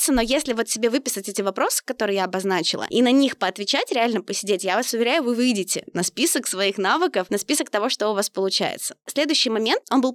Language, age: Russian, 20-39